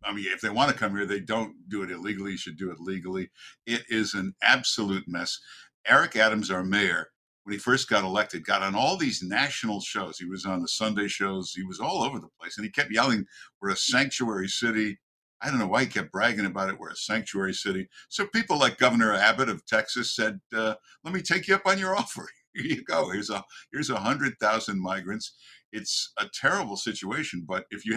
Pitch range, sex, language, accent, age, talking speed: 95-125 Hz, male, English, American, 60-79, 225 wpm